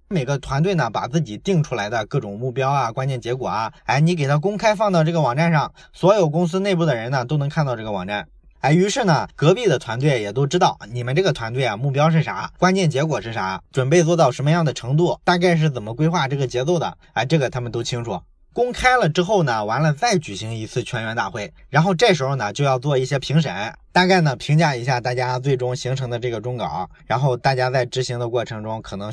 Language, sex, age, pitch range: Chinese, male, 20-39, 125-170 Hz